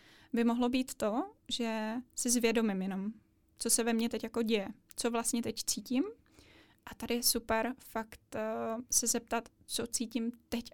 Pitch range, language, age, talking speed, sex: 225-250 Hz, Czech, 20-39, 160 wpm, female